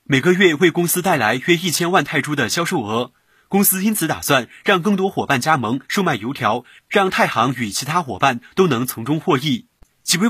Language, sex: Chinese, male